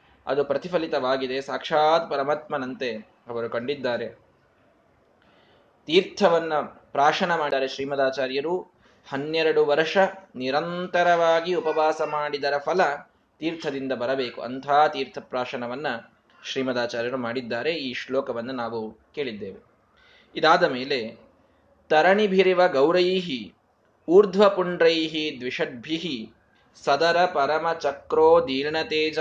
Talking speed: 75 wpm